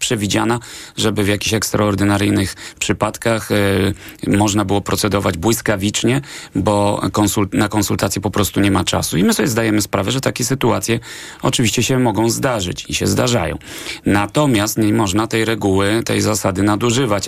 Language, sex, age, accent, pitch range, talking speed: Polish, male, 30-49, native, 95-110 Hz, 140 wpm